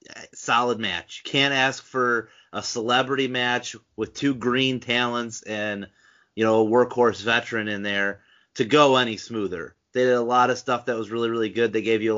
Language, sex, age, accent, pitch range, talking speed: English, male, 30-49, American, 110-125 Hz, 195 wpm